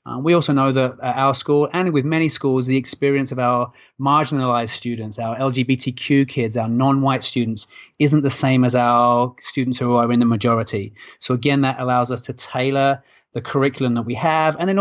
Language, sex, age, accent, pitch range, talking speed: English, male, 30-49, British, 125-150 Hz, 195 wpm